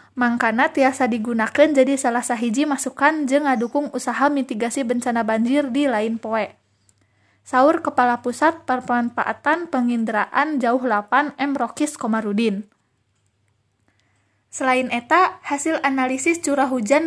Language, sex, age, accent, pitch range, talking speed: Indonesian, female, 20-39, native, 225-275 Hz, 115 wpm